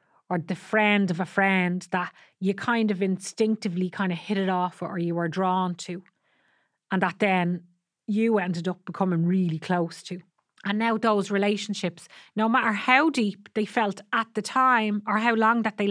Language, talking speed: English, 185 wpm